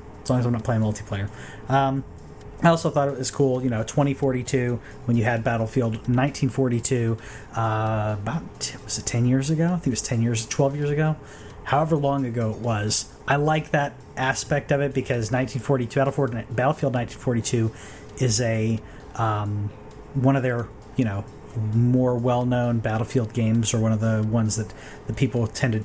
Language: English